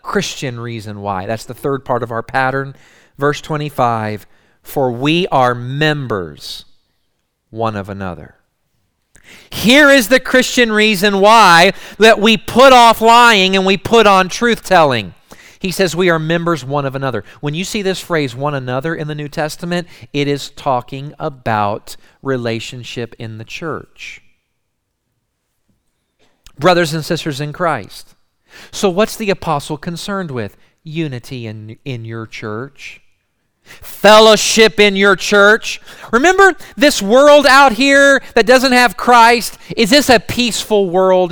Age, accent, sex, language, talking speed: 40-59, American, male, English, 140 wpm